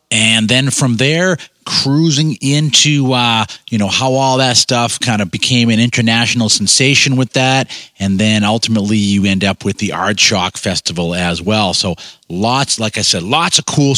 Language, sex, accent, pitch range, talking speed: English, male, American, 110-145 Hz, 180 wpm